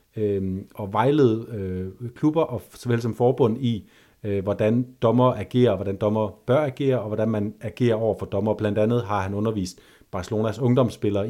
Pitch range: 100-120 Hz